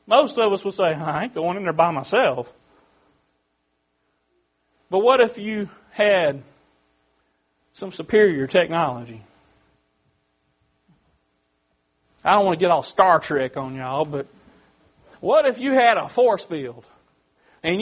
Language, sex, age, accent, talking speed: English, male, 40-59, American, 130 wpm